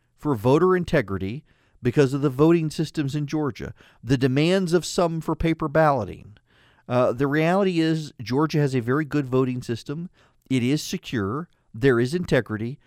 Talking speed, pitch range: 160 wpm, 115-155 Hz